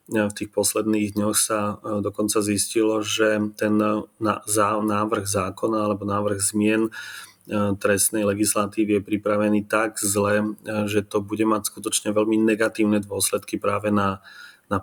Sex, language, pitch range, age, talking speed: male, Slovak, 100-110 Hz, 30-49, 125 wpm